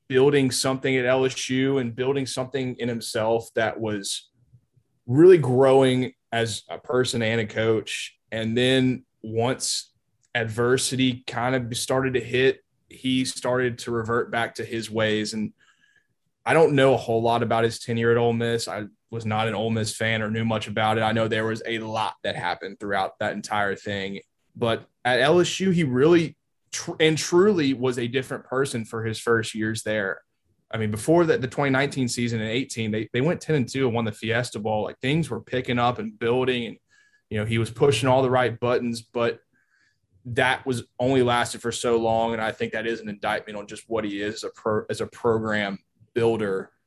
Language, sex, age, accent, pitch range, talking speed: English, male, 20-39, American, 110-130 Hz, 195 wpm